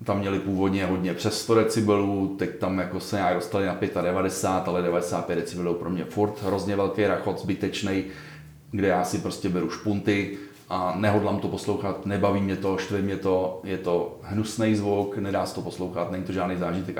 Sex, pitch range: male, 95-105 Hz